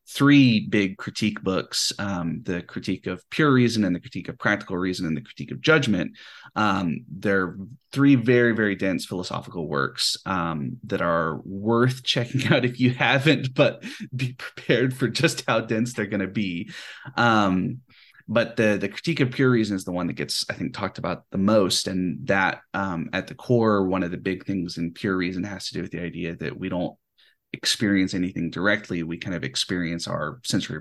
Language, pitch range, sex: English, 90-120 Hz, male